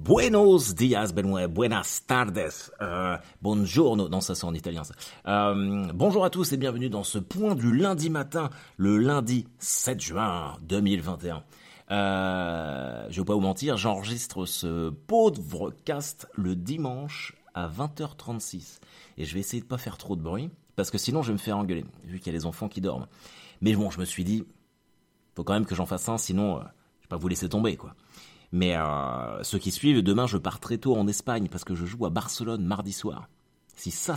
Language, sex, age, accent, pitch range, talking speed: French, male, 30-49, French, 90-130 Hz, 200 wpm